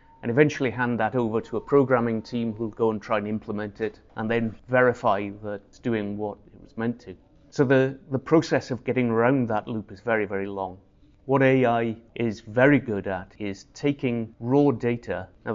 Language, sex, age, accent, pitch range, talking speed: English, male, 30-49, British, 105-130 Hz, 200 wpm